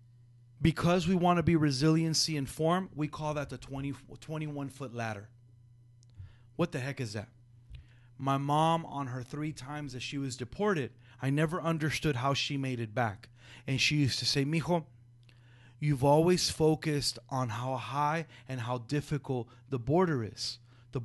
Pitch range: 120-165 Hz